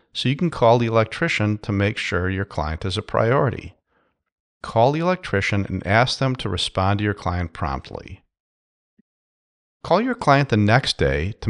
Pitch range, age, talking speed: 95-130 Hz, 40-59, 170 wpm